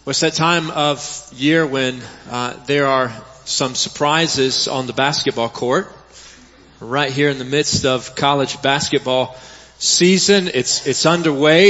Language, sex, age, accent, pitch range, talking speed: English, male, 30-49, American, 140-185 Hz, 150 wpm